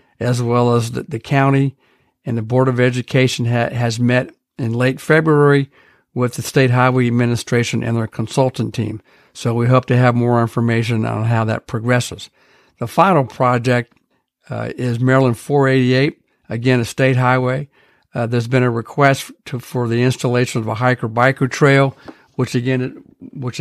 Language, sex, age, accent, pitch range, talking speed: English, male, 60-79, American, 120-130 Hz, 150 wpm